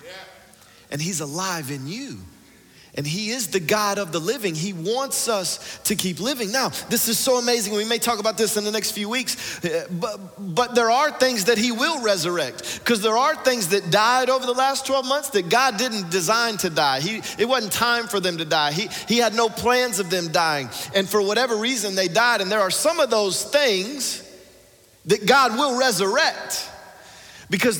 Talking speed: 205 wpm